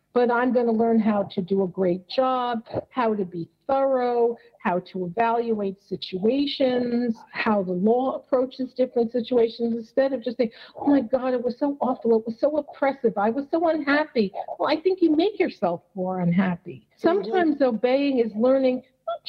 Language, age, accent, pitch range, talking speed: English, 50-69, American, 200-260 Hz, 175 wpm